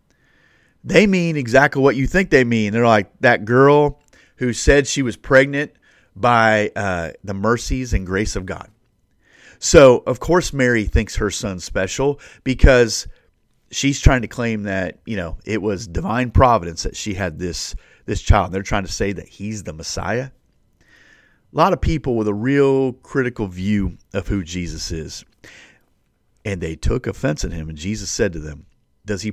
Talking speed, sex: 175 wpm, male